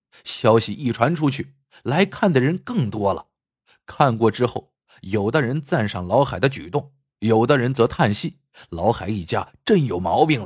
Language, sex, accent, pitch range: Chinese, male, native, 110-145 Hz